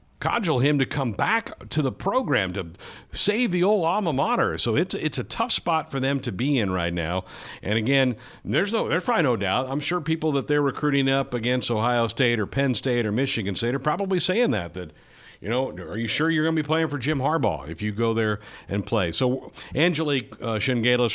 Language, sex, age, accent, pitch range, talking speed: English, male, 60-79, American, 100-130 Hz, 225 wpm